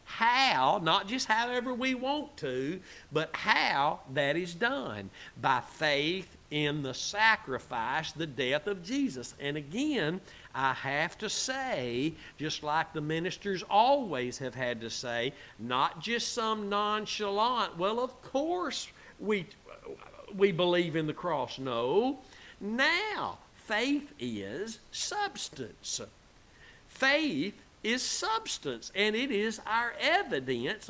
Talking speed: 120 wpm